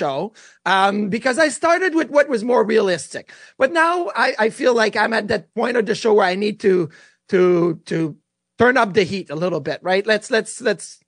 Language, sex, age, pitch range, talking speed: English, male, 30-49, 180-225 Hz, 215 wpm